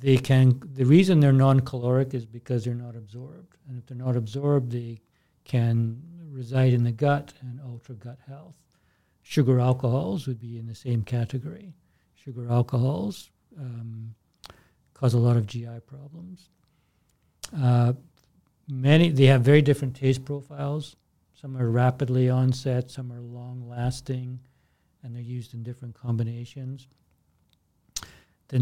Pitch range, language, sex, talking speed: 120-140 Hz, English, male, 140 wpm